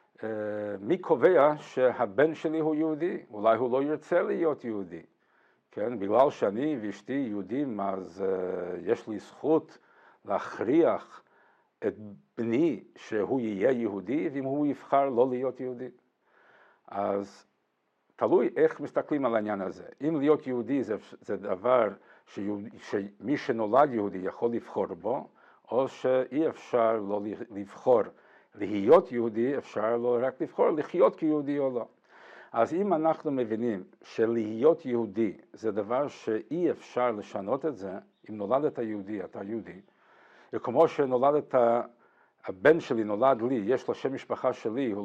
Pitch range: 110-150 Hz